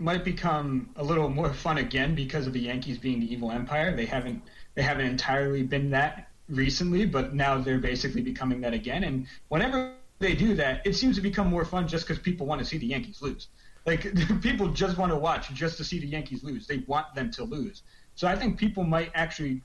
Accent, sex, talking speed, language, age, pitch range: American, male, 225 wpm, English, 30-49, 130-170 Hz